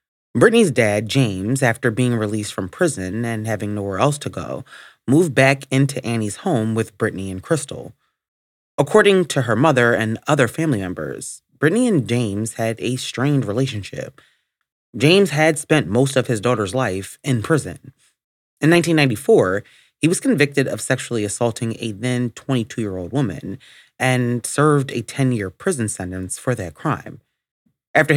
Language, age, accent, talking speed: English, 30-49, American, 150 wpm